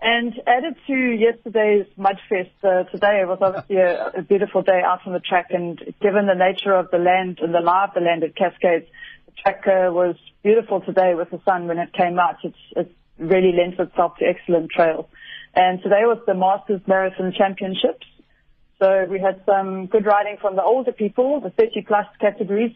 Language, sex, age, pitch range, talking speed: English, female, 30-49, 180-205 Hz, 190 wpm